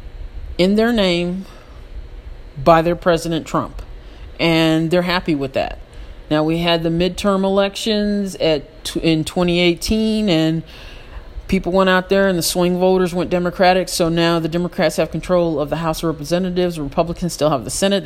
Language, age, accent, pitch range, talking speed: English, 40-59, American, 170-210 Hz, 160 wpm